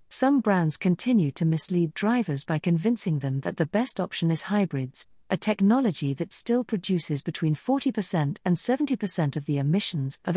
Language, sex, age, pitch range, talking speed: English, female, 50-69, 165-220 Hz, 160 wpm